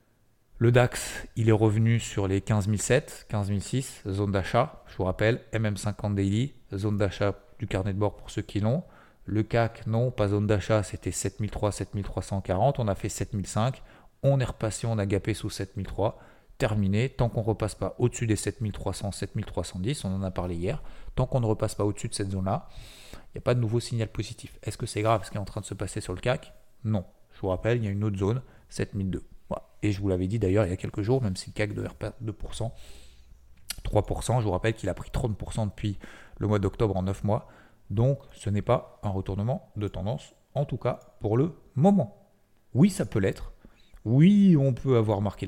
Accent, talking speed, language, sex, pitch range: French, 210 wpm, French, male, 100-120 Hz